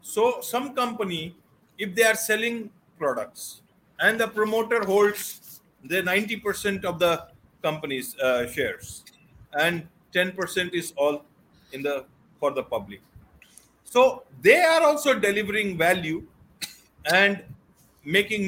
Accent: Indian